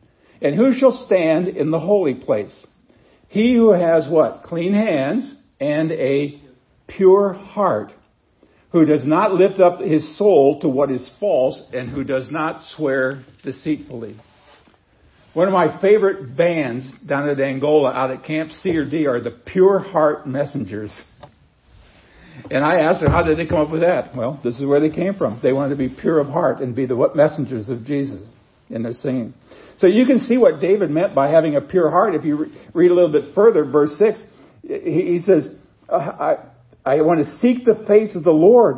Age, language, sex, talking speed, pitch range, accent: 60-79, English, male, 190 wpm, 140-195 Hz, American